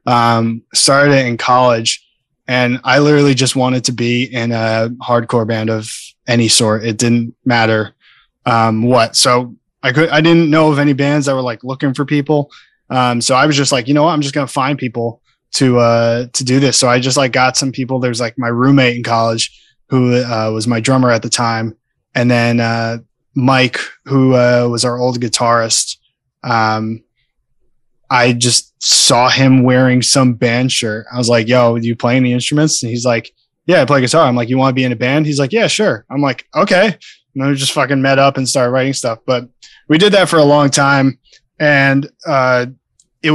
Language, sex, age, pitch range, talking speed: English, male, 20-39, 120-140 Hz, 210 wpm